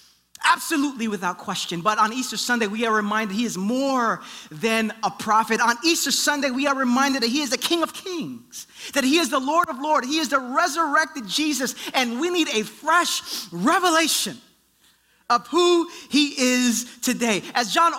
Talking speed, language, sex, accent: 180 wpm, English, male, American